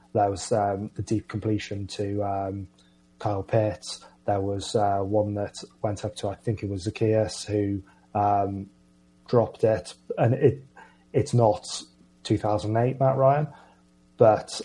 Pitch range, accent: 100-115 Hz, British